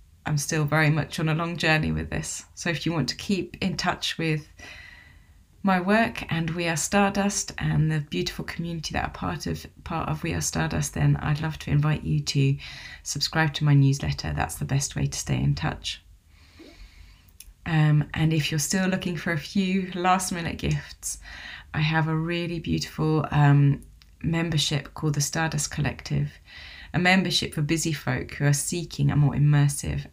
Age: 30-49